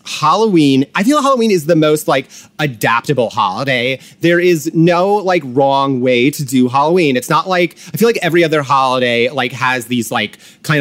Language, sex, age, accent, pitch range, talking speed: English, male, 30-49, American, 130-160 Hz, 185 wpm